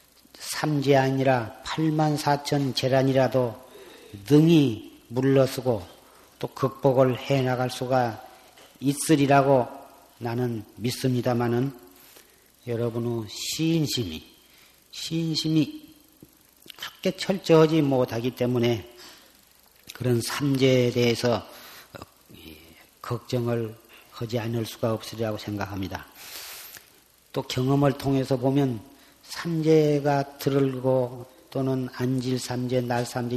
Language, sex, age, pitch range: Korean, male, 40-59, 120-140 Hz